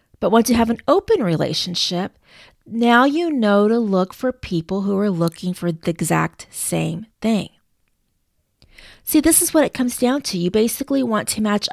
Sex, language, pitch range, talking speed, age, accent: female, English, 215-310 Hz, 180 wpm, 30-49, American